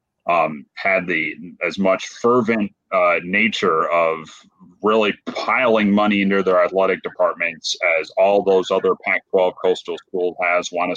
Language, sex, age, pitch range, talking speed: English, male, 30-49, 95-115 Hz, 140 wpm